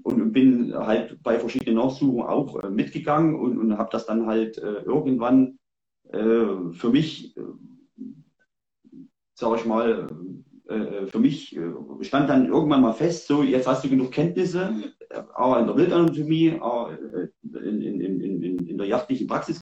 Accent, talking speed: German, 160 wpm